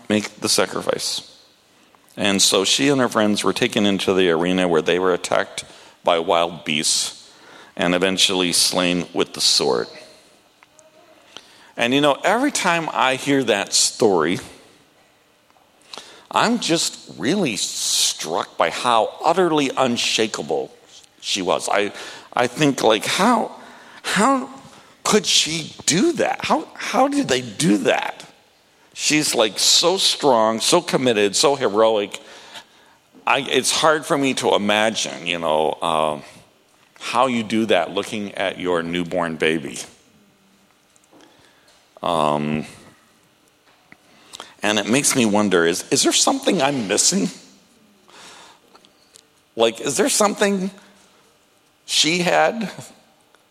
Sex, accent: male, American